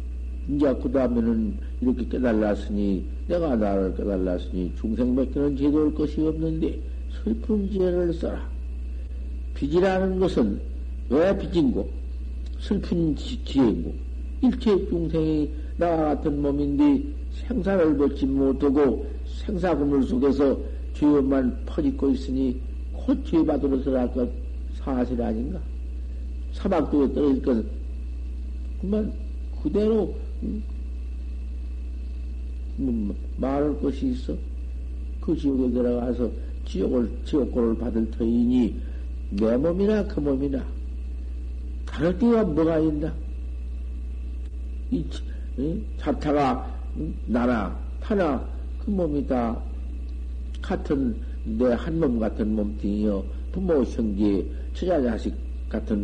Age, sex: 60-79, male